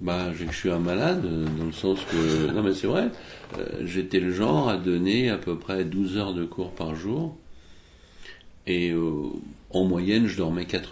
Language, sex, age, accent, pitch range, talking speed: French, male, 60-79, French, 80-95 Hz, 190 wpm